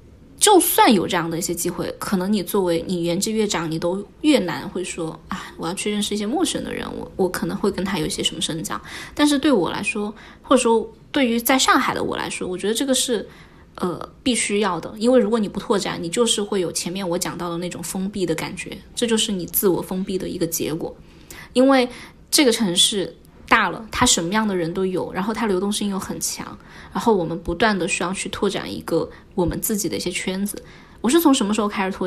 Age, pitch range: 20-39, 175-230 Hz